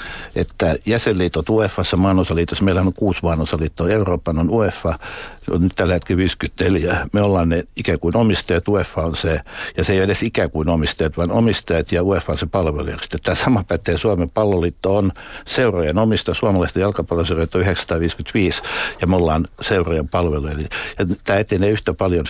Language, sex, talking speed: Finnish, male, 160 wpm